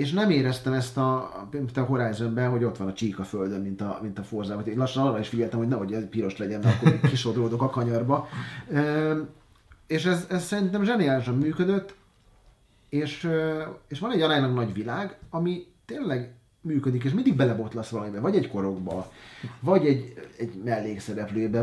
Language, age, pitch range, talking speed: Hungarian, 30-49, 110-145 Hz, 170 wpm